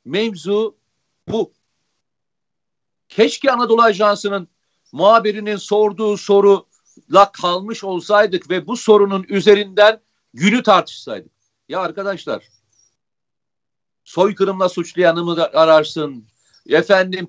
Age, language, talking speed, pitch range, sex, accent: 50-69, Turkish, 80 wpm, 180-220 Hz, male, native